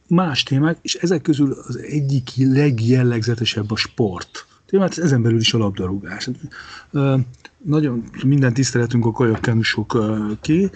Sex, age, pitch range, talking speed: male, 40-59, 105-130 Hz, 130 wpm